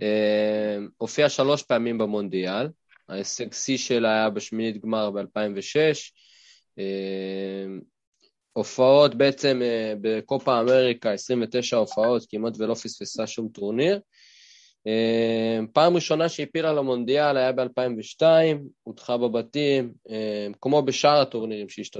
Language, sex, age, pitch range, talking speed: Hebrew, male, 20-39, 105-140 Hz, 95 wpm